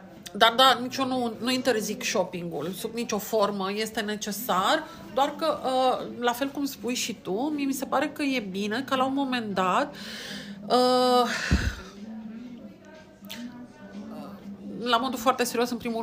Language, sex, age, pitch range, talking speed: Romanian, female, 40-59, 210-250 Hz, 140 wpm